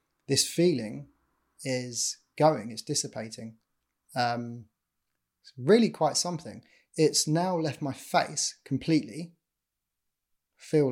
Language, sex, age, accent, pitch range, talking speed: English, male, 20-39, British, 125-155 Hz, 105 wpm